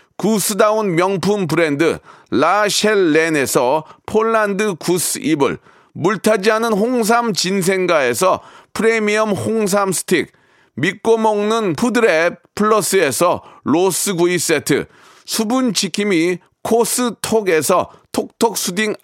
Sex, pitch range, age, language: male, 180-225 Hz, 40-59, Korean